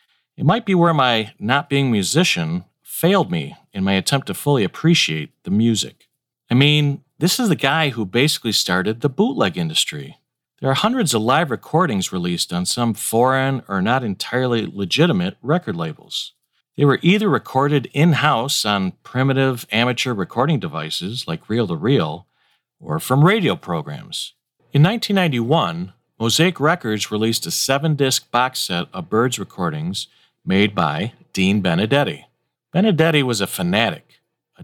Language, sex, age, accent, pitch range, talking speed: English, male, 40-59, American, 115-170 Hz, 150 wpm